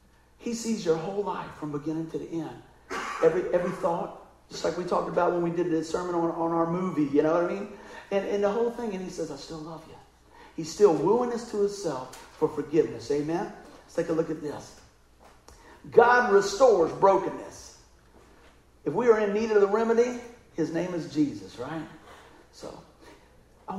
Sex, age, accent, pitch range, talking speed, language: male, 50-69, American, 155-210 Hz, 195 wpm, English